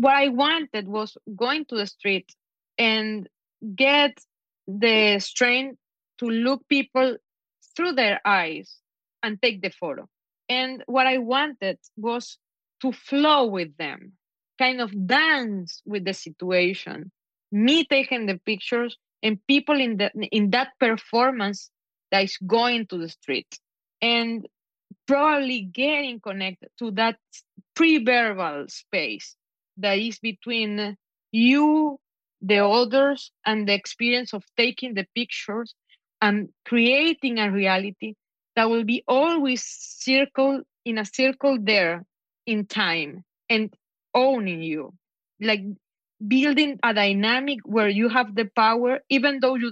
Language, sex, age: English, female, 20-39